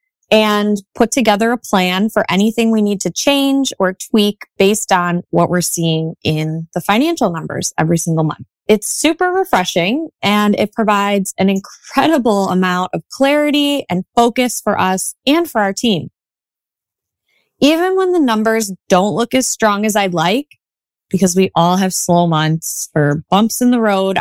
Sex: female